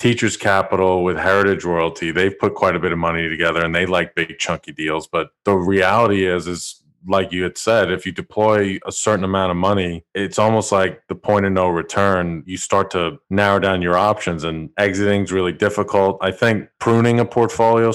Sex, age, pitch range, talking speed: male, 30-49, 90-100 Hz, 205 wpm